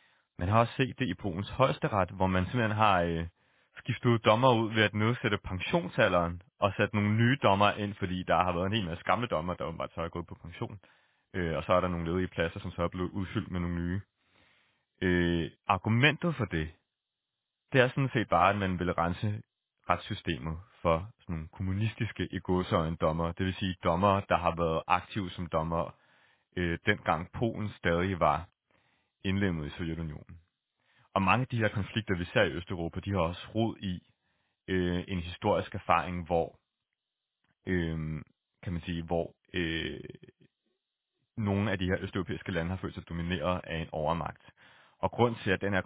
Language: Danish